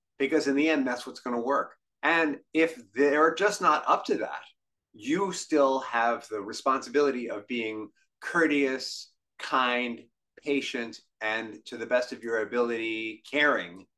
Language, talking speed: English, 150 wpm